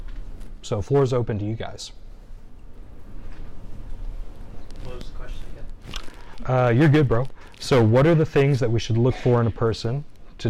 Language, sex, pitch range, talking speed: English, male, 105-130 Hz, 160 wpm